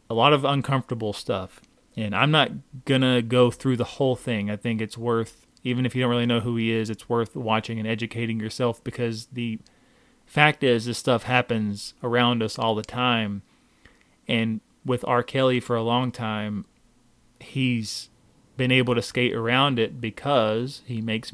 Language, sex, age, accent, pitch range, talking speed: English, male, 30-49, American, 110-125 Hz, 175 wpm